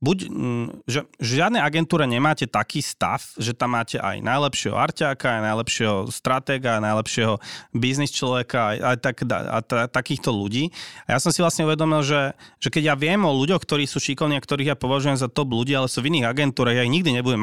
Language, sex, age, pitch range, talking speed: Slovak, male, 30-49, 120-145 Hz, 205 wpm